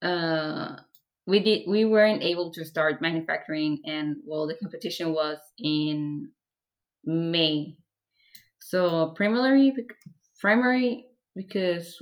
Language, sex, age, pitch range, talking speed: English, female, 20-39, 155-190 Hz, 100 wpm